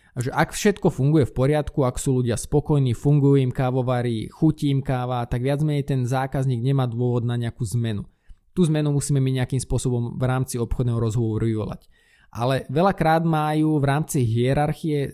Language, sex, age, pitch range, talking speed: Slovak, male, 20-39, 125-150 Hz, 170 wpm